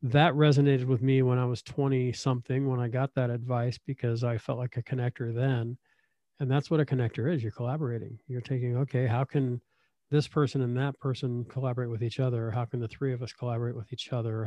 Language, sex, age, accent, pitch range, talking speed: English, male, 40-59, American, 120-140 Hz, 220 wpm